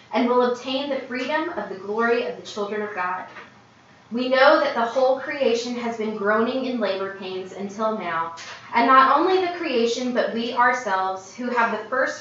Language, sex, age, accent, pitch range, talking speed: English, female, 20-39, American, 205-255 Hz, 190 wpm